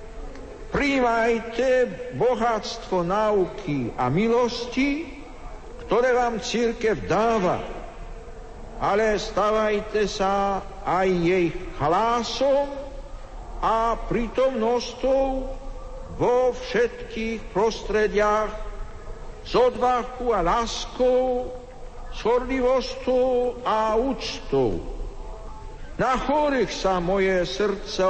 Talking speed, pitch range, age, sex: 70 wpm, 200-240 Hz, 60-79, male